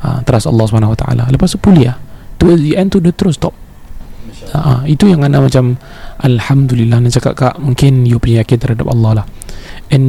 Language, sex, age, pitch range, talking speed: Malay, male, 20-39, 115-145 Hz, 195 wpm